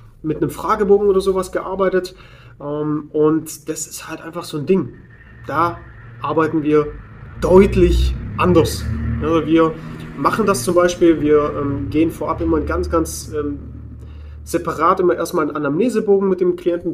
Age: 30-49